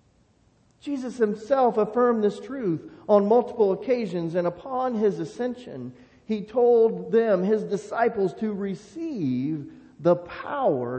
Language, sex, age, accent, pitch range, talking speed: English, male, 40-59, American, 170-225 Hz, 115 wpm